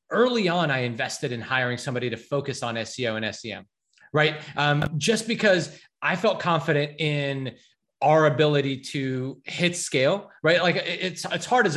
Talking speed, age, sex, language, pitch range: 165 wpm, 30-49, male, English, 140-185 Hz